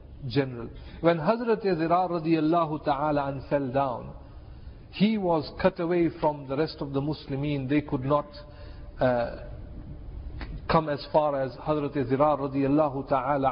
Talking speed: 130 wpm